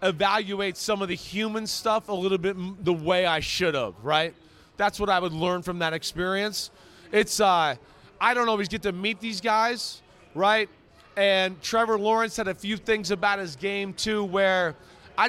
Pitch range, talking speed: 175-210 Hz, 185 wpm